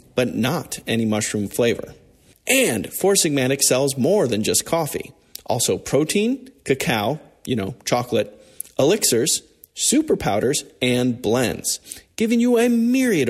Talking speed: 125 wpm